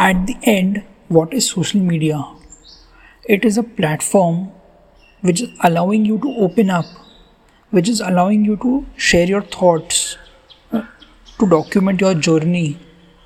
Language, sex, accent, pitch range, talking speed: English, male, Indian, 165-205 Hz, 135 wpm